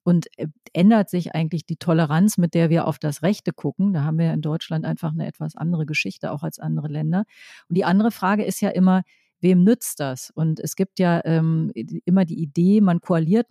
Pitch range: 160-195 Hz